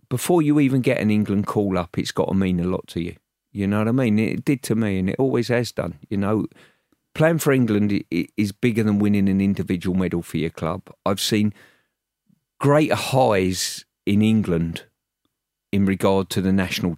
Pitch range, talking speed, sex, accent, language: 90-105 Hz, 195 wpm, male, British, English